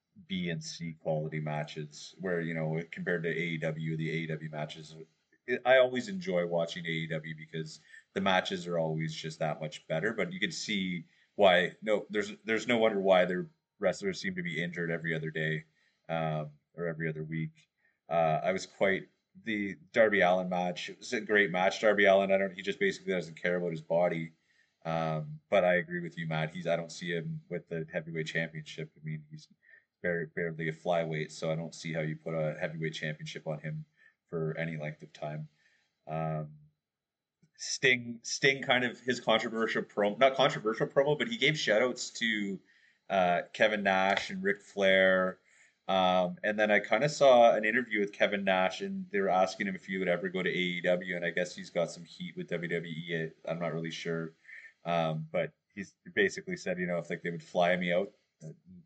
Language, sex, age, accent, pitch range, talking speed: English, male, 30-49, American, 80-110 Hz, 195 wpm